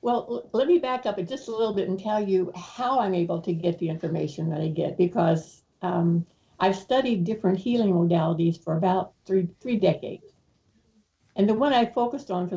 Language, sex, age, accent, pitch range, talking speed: English, female, 60-79, American, 175-210 Hz, 195 wpm